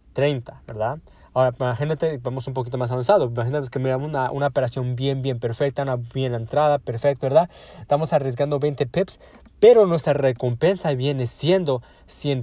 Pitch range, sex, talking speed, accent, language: 125-160 Hz, male, 160 wpm, Mexican, Spanish